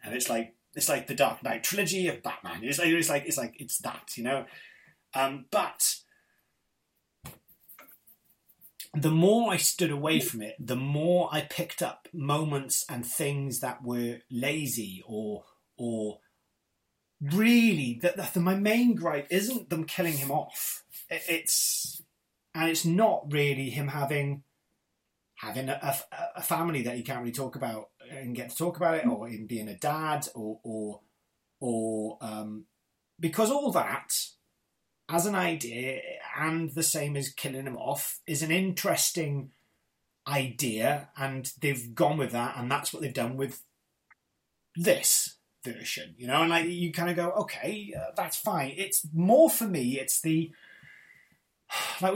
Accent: British